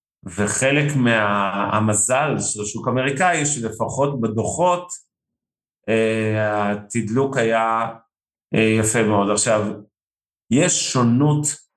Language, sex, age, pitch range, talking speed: Hebrew, male, 50-69, 105-130 Hz, 85 wpm